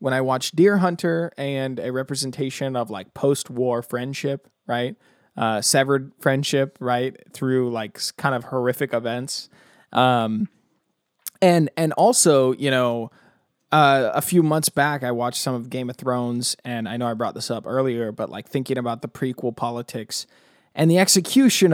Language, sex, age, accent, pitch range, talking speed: English, male, 20-39, American, 125-170 Hz, 165 wpm